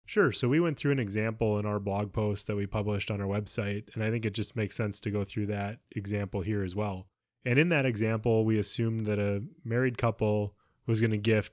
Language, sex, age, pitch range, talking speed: English, male, 20-39, 100-115 Hz, 240 wpm